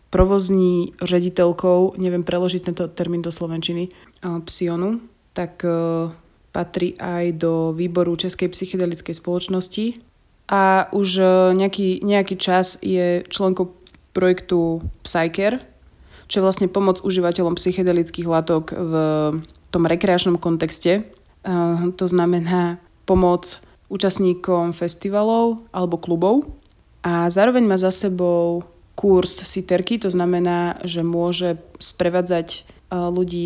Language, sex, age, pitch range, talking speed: Slovak, female, 20-39, 175-190 Hz, 100 wpm